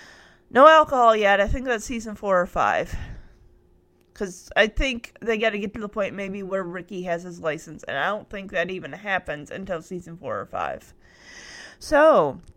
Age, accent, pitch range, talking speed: 30-49, American, 185-255 Hz, 180 wpm